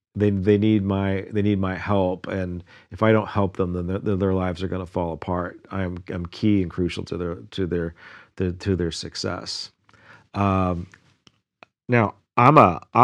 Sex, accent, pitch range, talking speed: male, American, 95-110 Hz, 190 wpm